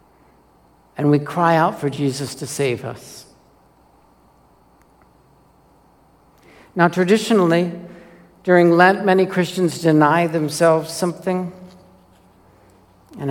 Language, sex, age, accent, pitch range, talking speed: English, male, 60-79, American, 125-160 Hz, 85 wpm